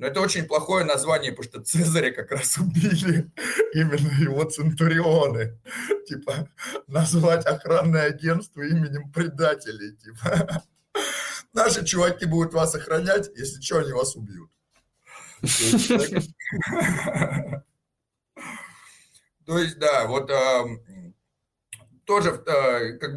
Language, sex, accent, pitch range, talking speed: Russian, male, native, 120-170 Hz, 95 wpm